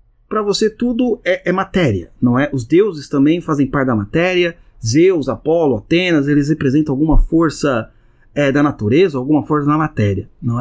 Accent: Brazilian